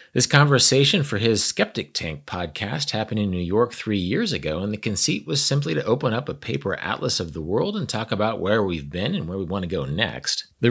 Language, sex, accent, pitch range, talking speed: English, male, American, 100-130 Hz, 235 wpm